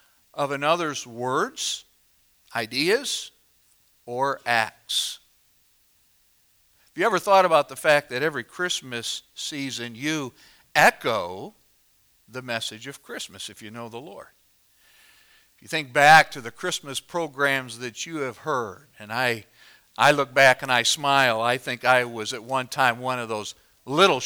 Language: English